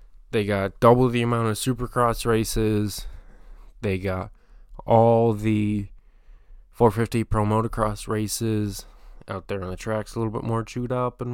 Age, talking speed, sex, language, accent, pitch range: 20-39, 150 wpm, male, English, American, 100-120 Hz